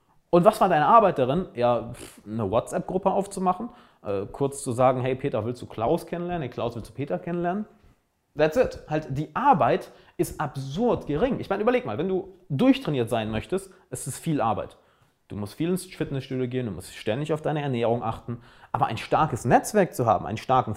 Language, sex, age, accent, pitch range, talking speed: German, male, 30-49, German, 110-165 Hz, 195 wpm